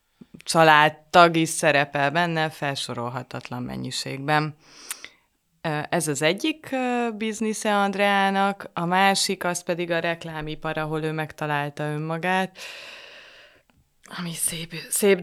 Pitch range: 150-175 Hz